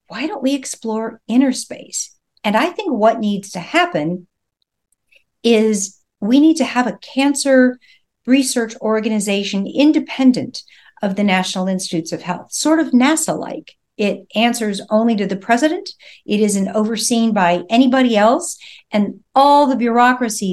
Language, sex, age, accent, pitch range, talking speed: English, female, 50-69, American, 200-250 Hz, 140 wpm